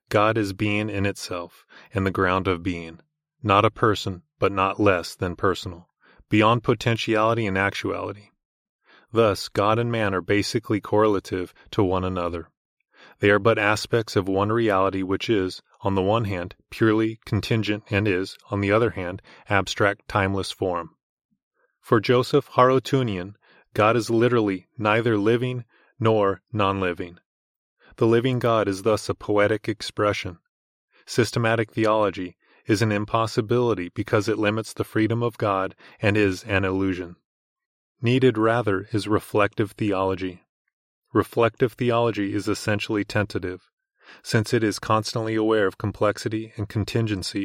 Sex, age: male, 30-49